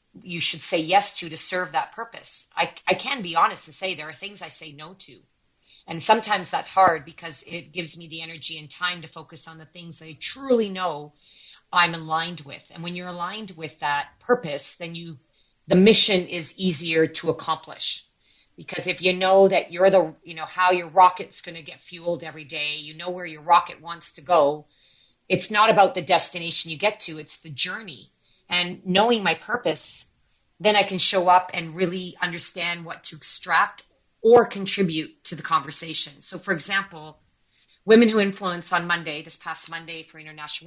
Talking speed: 195 wpm